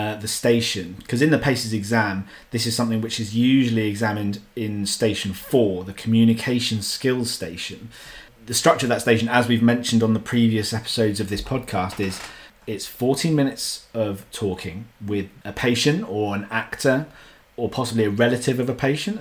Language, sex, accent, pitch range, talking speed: English, male, British, 100-120 Hz, 175 wpm